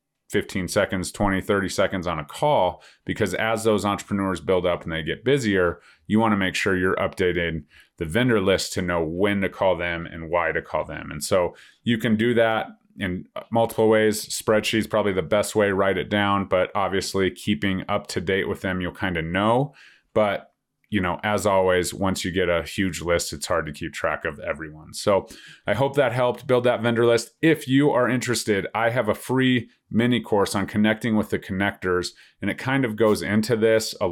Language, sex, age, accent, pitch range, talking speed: English, male, 30-49, American, 95-115 Hz, 210 wpm